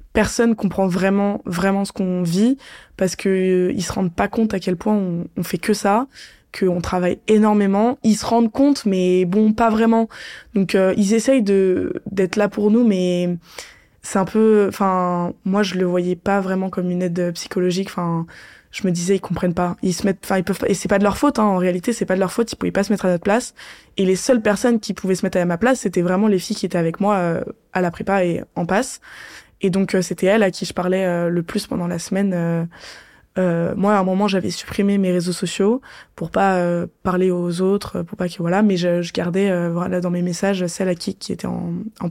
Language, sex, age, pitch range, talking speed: French, female, 20-39, 180-205 Hz, 245 wpm